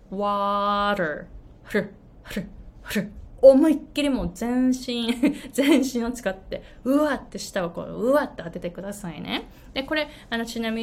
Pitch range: 185-270 Hz